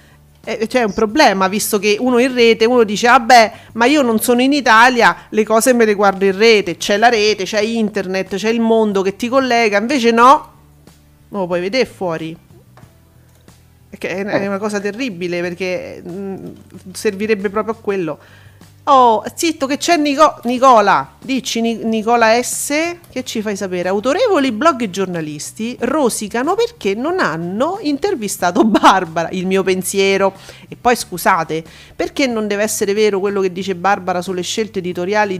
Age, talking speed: 40-59, 155 wpm